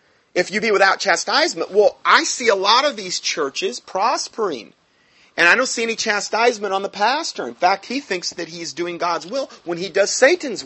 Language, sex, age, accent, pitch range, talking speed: English, male, 30-49, American, 145-200 Hz, 205 wpm